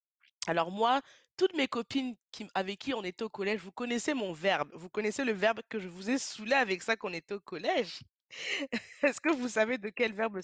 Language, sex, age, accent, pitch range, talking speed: French, female, 20-39, French, 185-275 Hz, 220 wpm